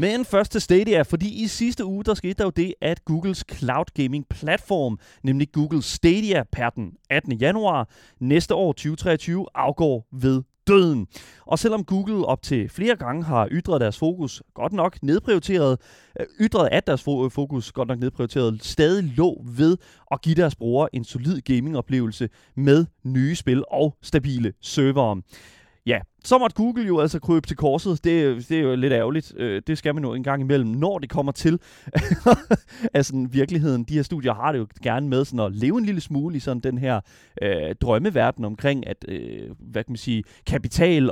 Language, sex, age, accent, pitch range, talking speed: Danish, male, 30-49, native, 130-175 Hz, 180 wpm